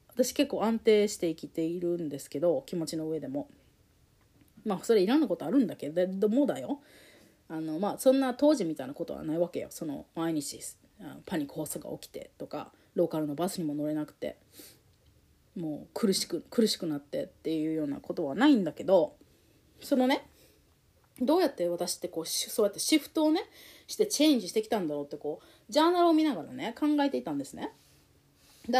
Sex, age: female, 30-49